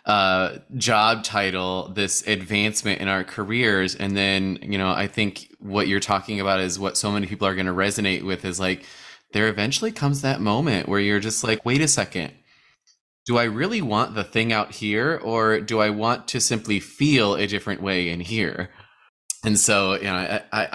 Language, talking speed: English, 195 wpm